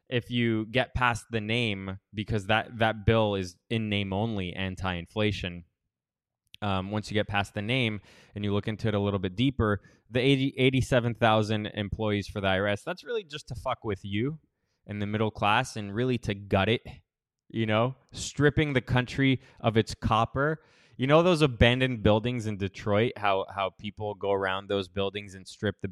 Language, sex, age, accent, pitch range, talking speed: English, male, 20-39, American, 100-125 Hz, 185 wpm